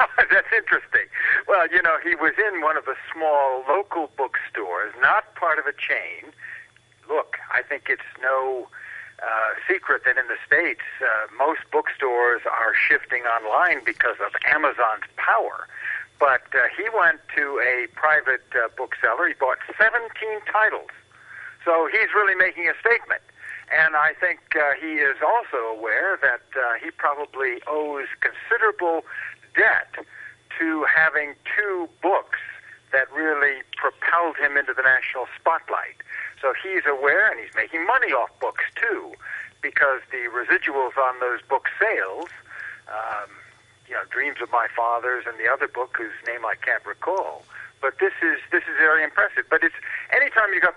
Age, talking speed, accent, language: 60-79, 155 wpm, American, English